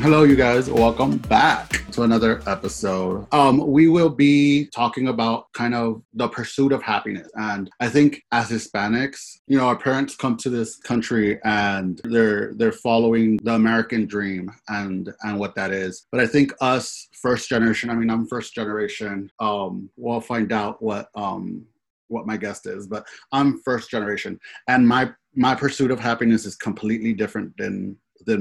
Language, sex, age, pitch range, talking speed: English, male, 30-49, 105-120 Hz, 170 wpm